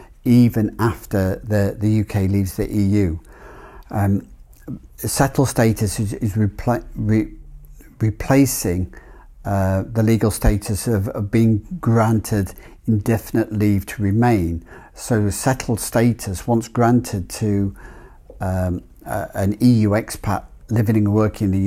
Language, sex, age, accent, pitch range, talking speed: English, male, 50-69, British, 100-115 Hz, 120 wpm